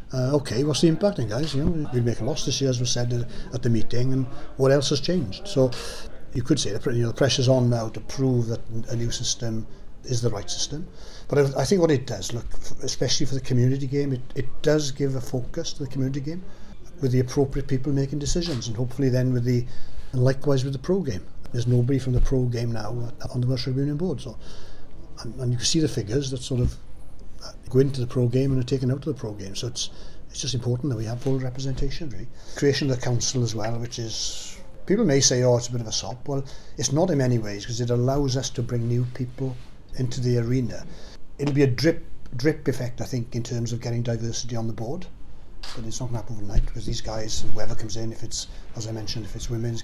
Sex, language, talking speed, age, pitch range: male, English, 245 wpm, 60-79, 115-135 Hz